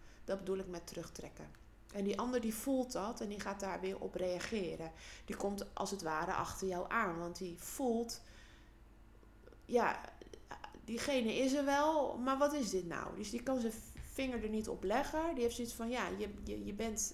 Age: 20-39